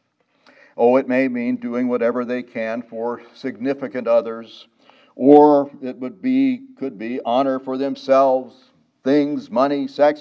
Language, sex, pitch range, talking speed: English, male, 115-160 Hz, 135 wpm